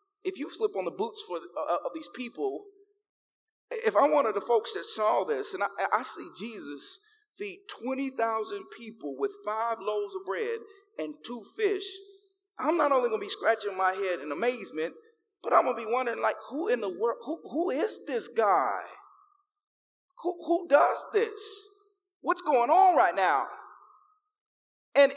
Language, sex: English, male